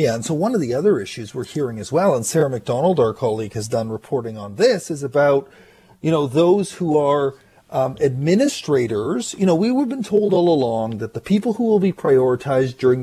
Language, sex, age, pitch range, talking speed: English, male, 40-59, 135-185 Hz, 215 wpm